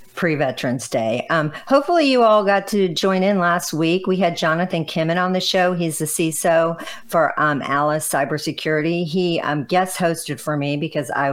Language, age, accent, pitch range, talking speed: English, 50-69, American, 140-165 Hz, 175 wpm